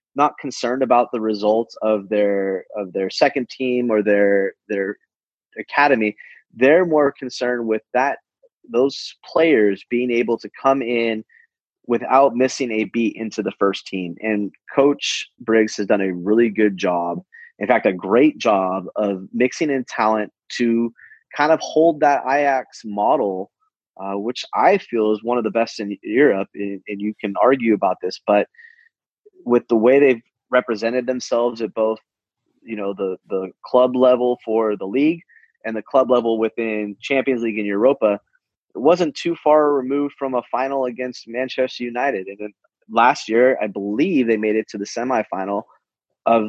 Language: English